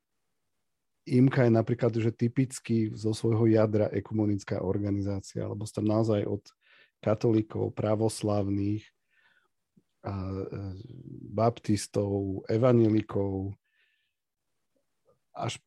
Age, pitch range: 40-59, 105-125 Hz